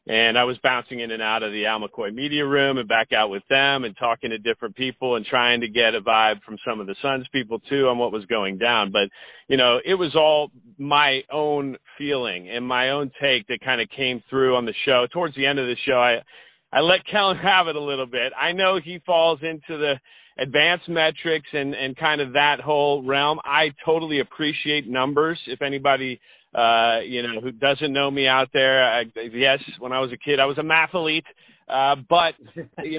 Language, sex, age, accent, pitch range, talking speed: English, male, 40-59, American, 115-150 Hz, 220 wpm